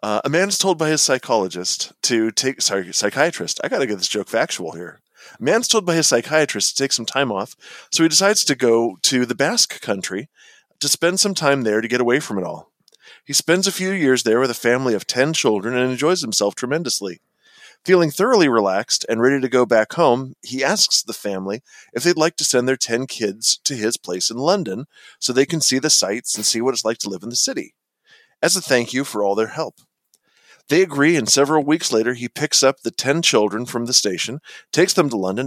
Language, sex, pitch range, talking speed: English, male, 120-165 Hz, 225 wpm